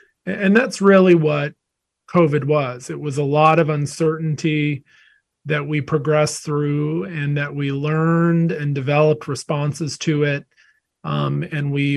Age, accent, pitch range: 40-59, American, 140-155 Hz